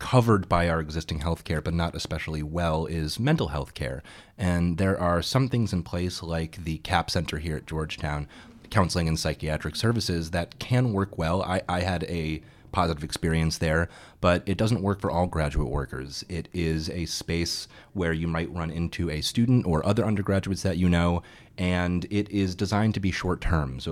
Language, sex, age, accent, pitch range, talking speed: English, male, 30-49, American, 80-95 Hz, 195 wpm